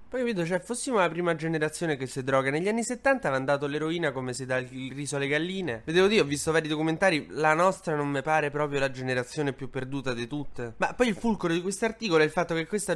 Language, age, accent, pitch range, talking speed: Italian, 20-39, native, 135-185 Hz, 245 wpm